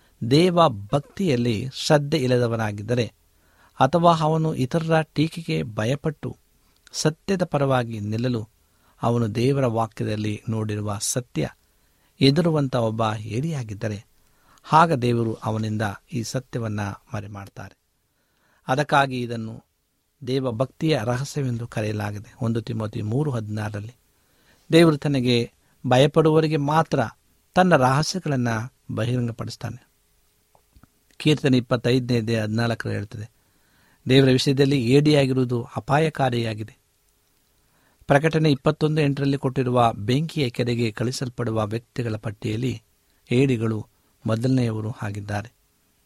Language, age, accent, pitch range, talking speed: Kannada, 60-79, native, 110-140 Hz, 80 wpm